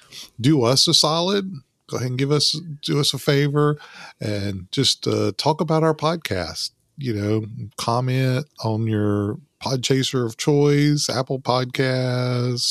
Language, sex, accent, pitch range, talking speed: English, male, American, 105-145 Hz, 145 wpm